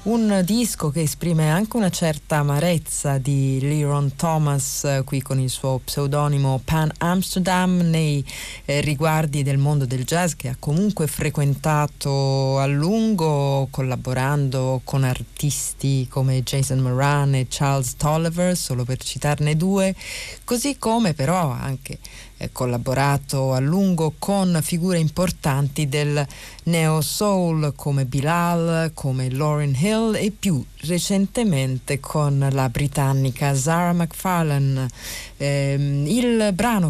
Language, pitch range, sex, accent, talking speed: Italian, 135-175 Hz, female, native, 115 wpm